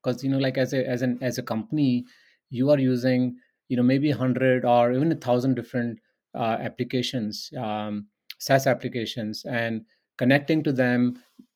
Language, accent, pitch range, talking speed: English, Indian, 110-135 Hz, 165 wpm